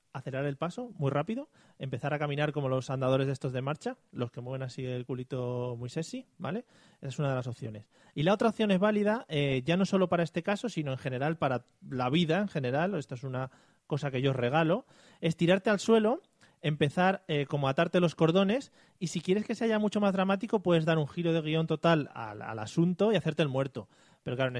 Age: 30-49